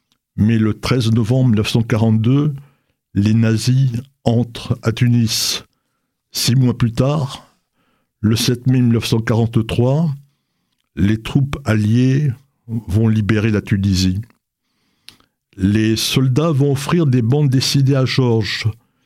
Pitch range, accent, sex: 110-135 Hz, French, male